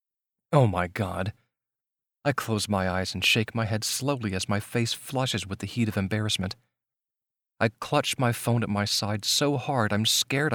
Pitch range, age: 110-160 Hz, 40-59